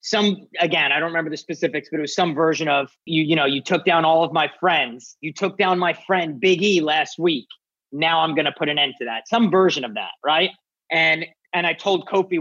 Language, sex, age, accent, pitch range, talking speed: English, male, 30-49, American, 155-200 Hz, 245 wpm